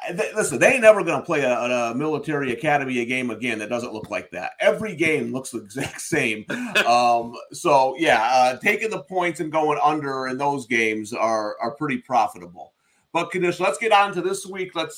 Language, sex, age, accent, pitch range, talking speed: English, male, 40-59, American, 135-185 Hz, 200 wpm